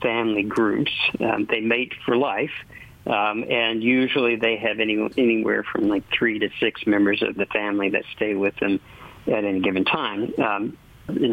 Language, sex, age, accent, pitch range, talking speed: English, male, 50-69, American, 105-120 Hz, 170 wpm